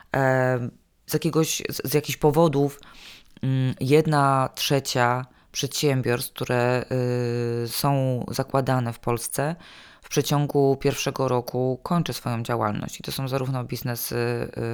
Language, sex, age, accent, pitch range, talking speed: Polish, female, 20-39, native, 125-145 Hz, 100 wpm